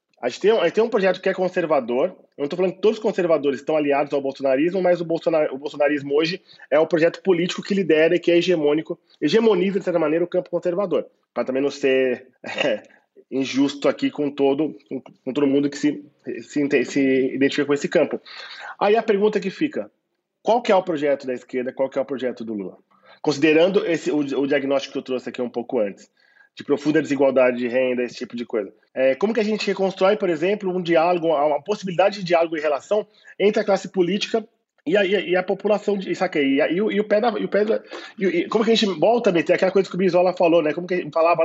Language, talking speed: Portuguese, 220 wpm